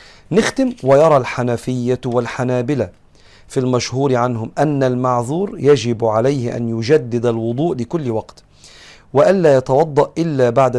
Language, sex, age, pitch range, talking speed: Arabic, male, 40-59, 115-140 Hz, 110 wpm